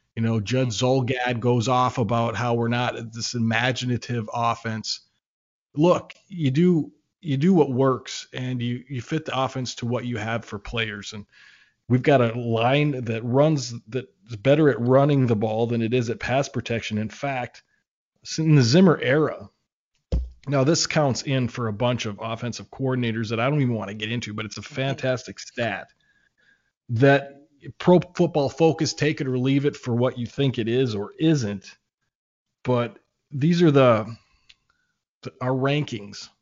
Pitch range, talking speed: 115-140 Hz, 170 wpm